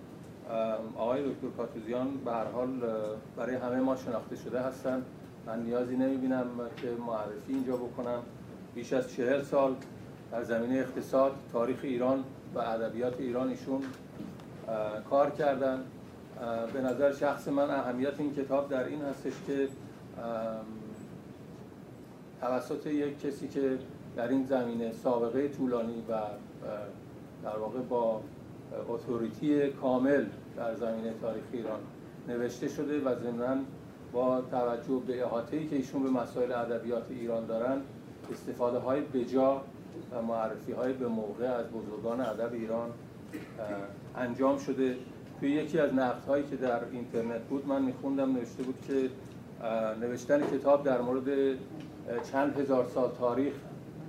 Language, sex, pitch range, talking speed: Persian, male, 120-135 Hz, 130 wpm